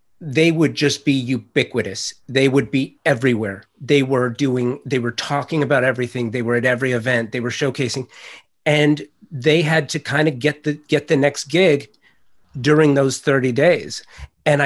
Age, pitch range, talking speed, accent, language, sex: 30-49, 125-150 Hz, 170 wpm, American, English, male